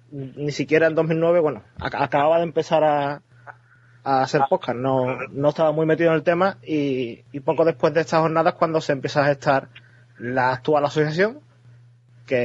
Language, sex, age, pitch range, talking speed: English, male, 20-39, 125-160 Hz, 175 wpm